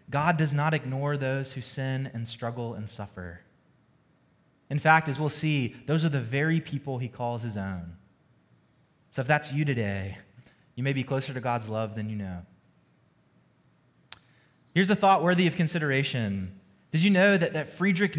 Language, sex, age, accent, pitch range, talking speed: English, male, 20-39, American, 125-165 Hz, 170 wpm